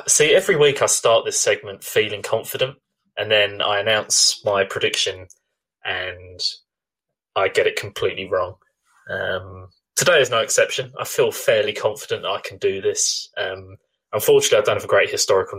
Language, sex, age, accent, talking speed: English, male, 20-39, British, 160 wpm